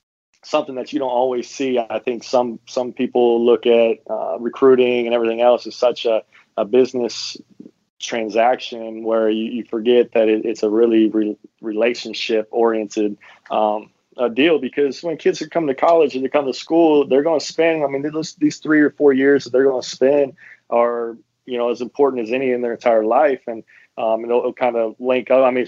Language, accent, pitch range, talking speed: English, American, 110-130 Hz, 205 wpm